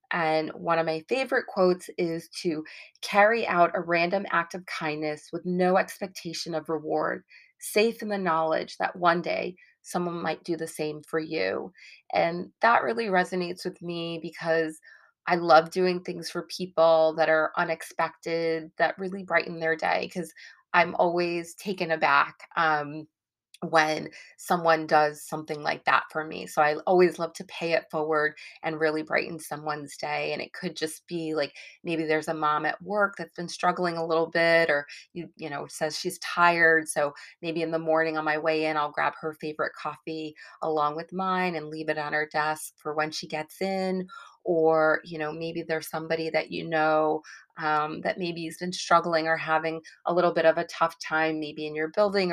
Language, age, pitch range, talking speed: English, 30-49, 155-175 Hz, 185 wpm